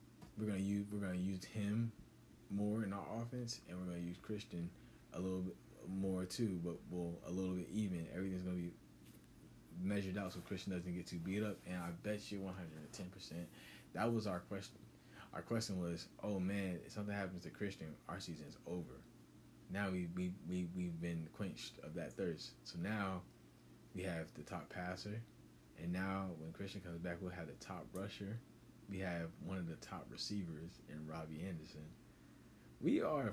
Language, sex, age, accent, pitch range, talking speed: English, male, 20-39, American, 85-105 Hz, 185 wpm